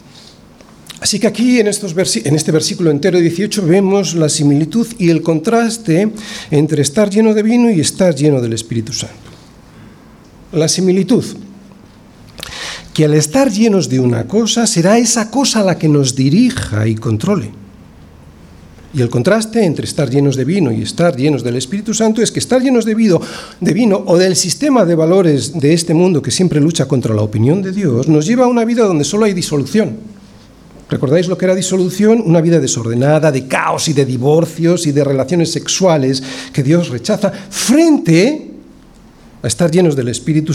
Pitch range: 140-200 Hz